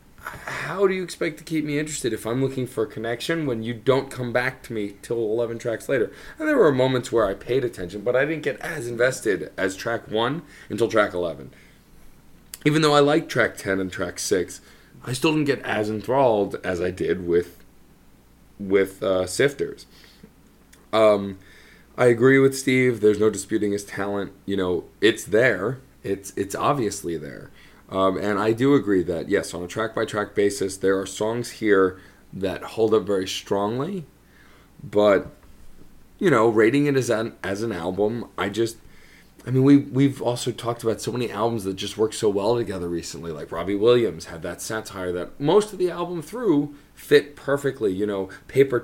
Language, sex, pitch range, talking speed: English, male, 100-130 Hz, 185 wpm